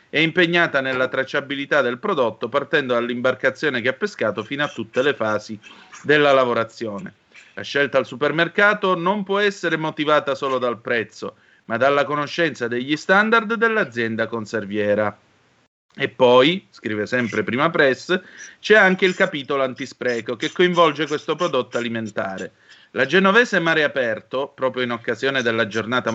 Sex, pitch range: male, 120-175 Hz